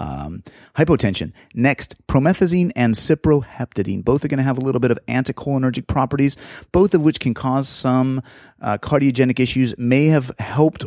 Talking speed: 160 wpm